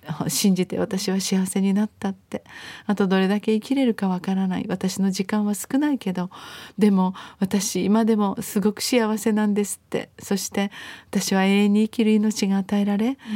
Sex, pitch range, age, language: female, 185-220 Hz, 40-59, Japanese